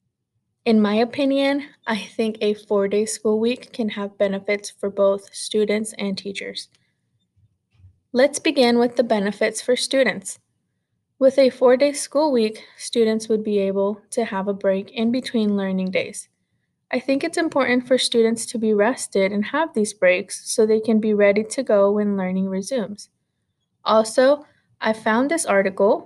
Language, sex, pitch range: English, female, 200-250 Hz